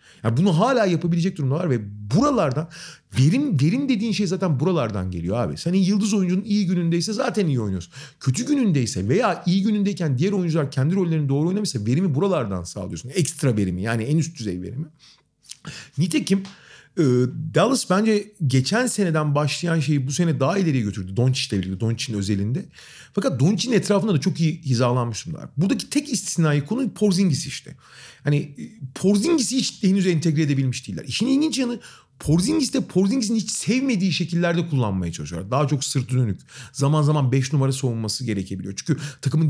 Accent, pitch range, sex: native, 135-190 Hz, male